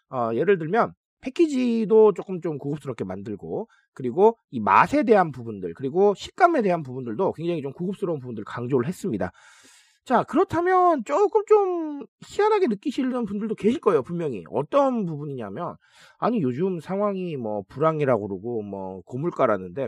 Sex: male